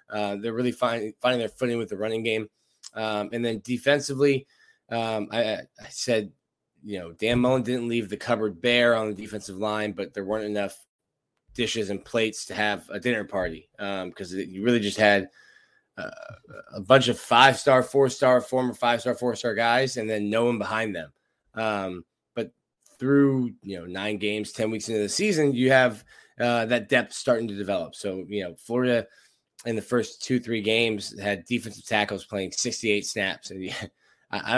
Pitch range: 105-130 Hz